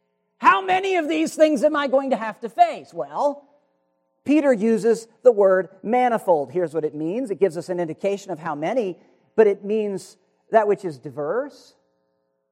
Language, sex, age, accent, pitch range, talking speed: English, male, 40-59, American, 170-275 Hz, 175 wpm